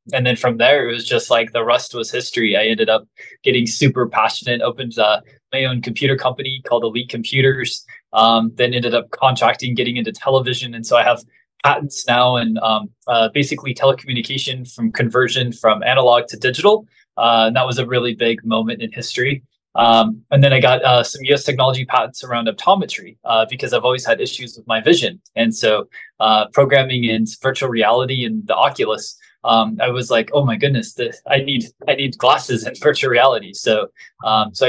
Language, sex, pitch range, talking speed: English, male, 115-130 Hz, 195 wpm